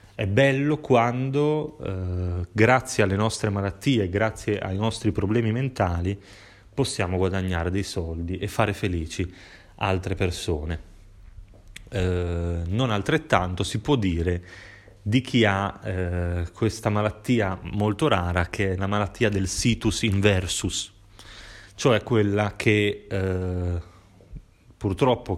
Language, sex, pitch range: Italian, male, 95-110 Hz